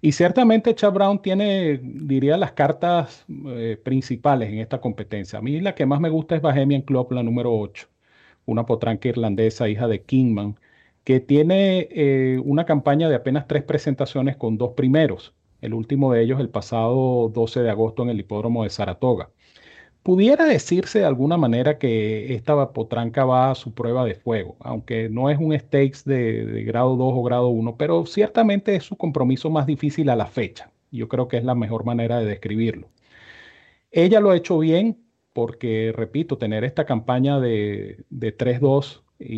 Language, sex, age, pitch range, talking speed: Spanish, male, 40-59, 115-150 Hz, 175 wpm